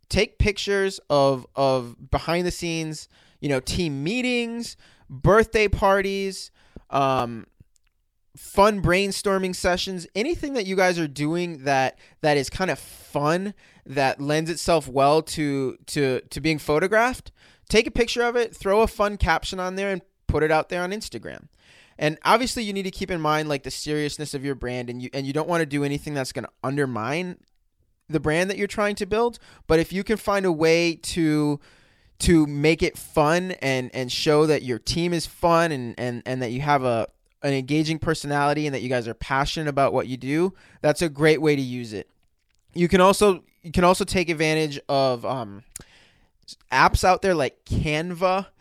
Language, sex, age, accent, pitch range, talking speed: English, male, 20-39, American, 135-180 Hz, 190 wpm